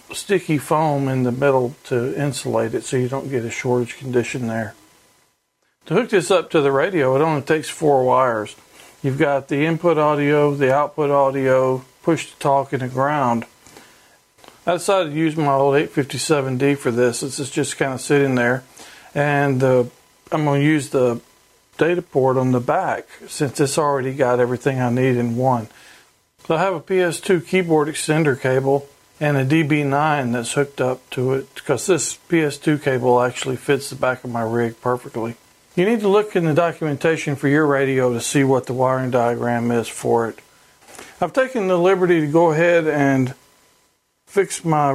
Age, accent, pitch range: 50-69, American, 130-155 Hz